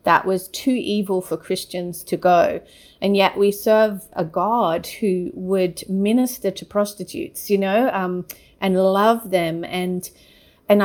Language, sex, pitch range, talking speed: Finnish, female, 185-215 Hz, 150 wpm